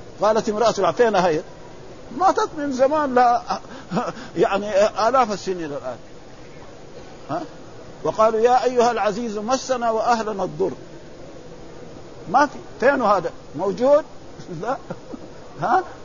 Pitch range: 190-240 Hz